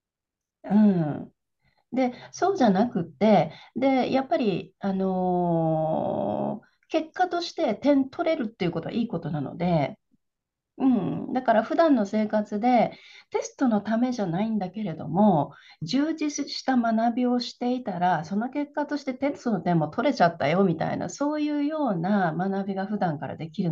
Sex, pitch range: female, 180-265 Hz